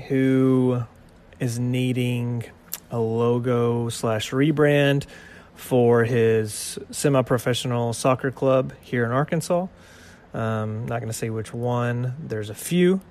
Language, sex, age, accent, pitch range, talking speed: English, male, 30-49, American, 110-130 Hz, 115 wpm